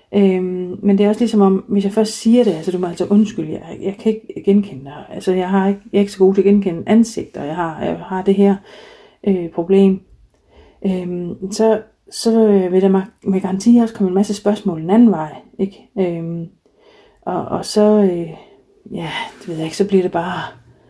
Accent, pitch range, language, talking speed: native, 170-205 Hz, Danish, 220 wpm